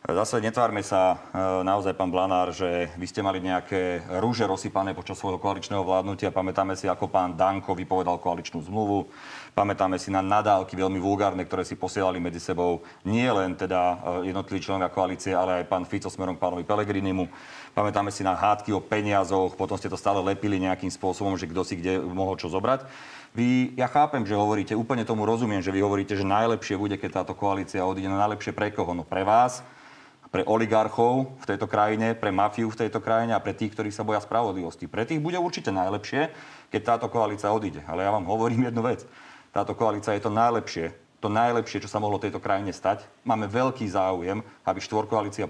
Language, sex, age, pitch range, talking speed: Slovak, male, 40-59, 95-110 Hz, 195 wpm